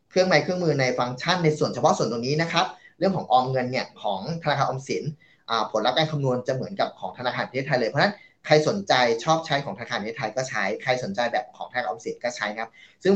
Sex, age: male, 20-39